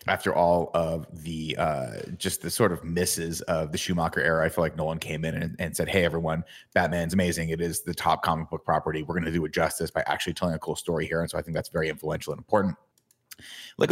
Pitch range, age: 80-95 Hz, 30-49